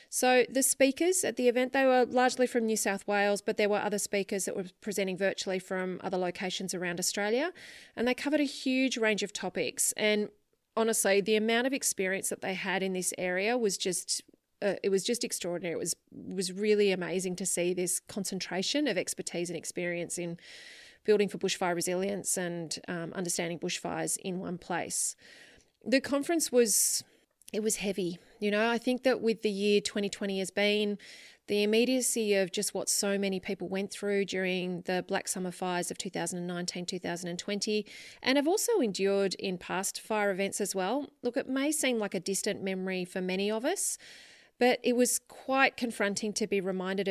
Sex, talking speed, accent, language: female, 185 wpm, Australian, English